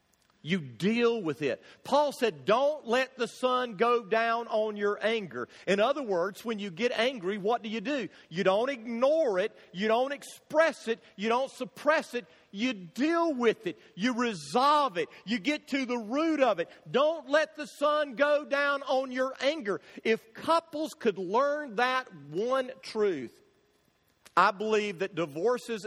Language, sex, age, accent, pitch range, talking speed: English, male, 50-69, American, 185-255 Hz, 165 wpm